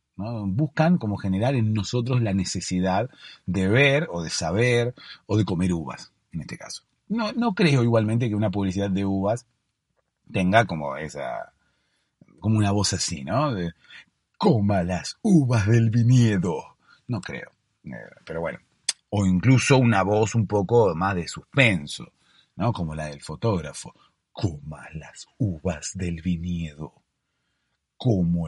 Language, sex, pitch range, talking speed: Spanish, male, 90-120 Hz, 140 wpm